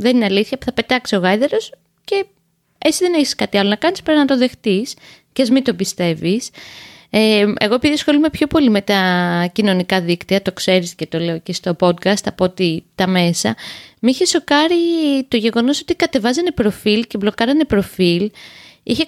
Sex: female